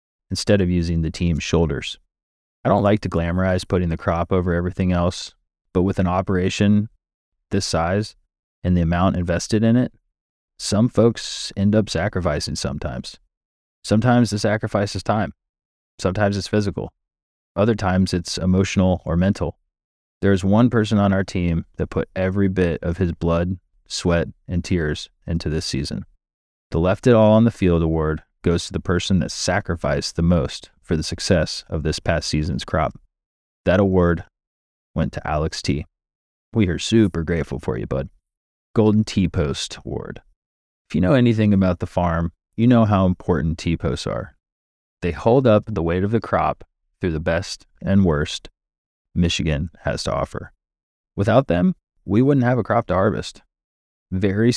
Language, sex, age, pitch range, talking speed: English, male, 30-49, 85-100 Hz, 165 wpm